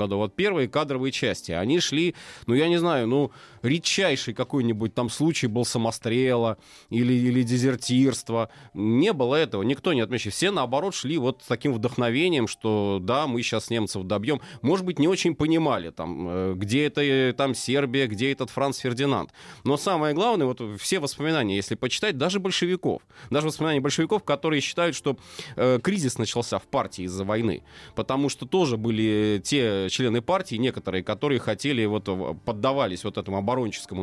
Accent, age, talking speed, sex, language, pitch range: native, 20-39, 160 wpm, male, Russian, 110-145 Hz